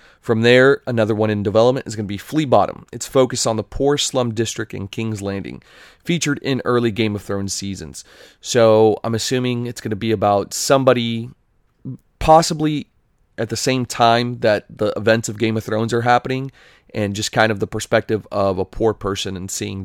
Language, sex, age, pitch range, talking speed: English, male, 30-49, 100-120 Hz, 195 wpm